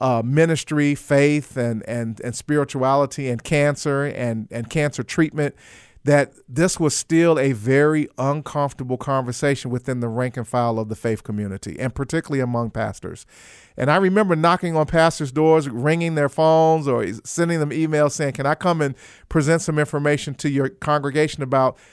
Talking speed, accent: 165 wpm, American